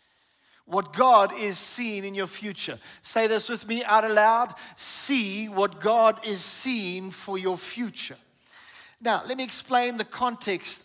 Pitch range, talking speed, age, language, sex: 180-230 Hz, 150 wpm, 50-69, English, male